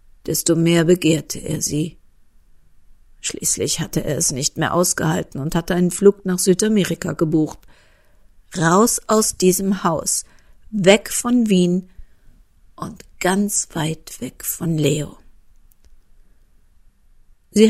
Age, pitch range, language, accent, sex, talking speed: 50-69, 120-195 Hz, German, German, female, 110 wpm